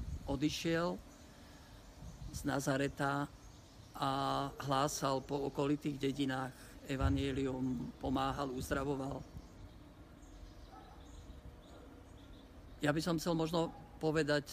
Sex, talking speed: male, 70 wpm